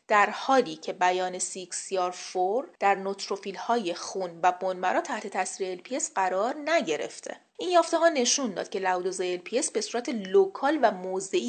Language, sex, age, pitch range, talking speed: Persian, female, 30-49, 190-285 Hz, 155 wpm